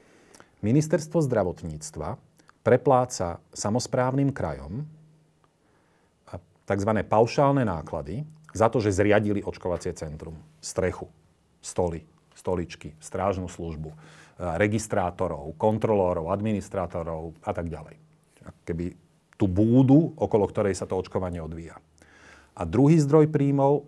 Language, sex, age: Slovak, male, 40-59